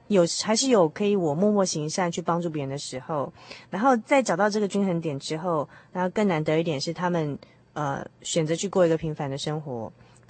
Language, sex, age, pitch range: Chinese, female, 20-39, 145-185 Hz